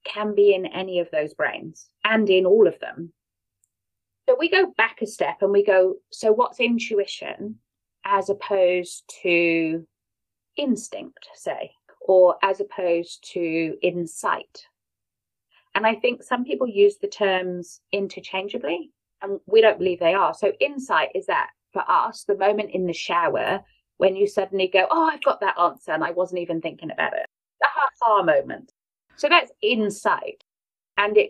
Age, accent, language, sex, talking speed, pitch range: 30-49, British, English, female, 165 wpm, 180-290 Hz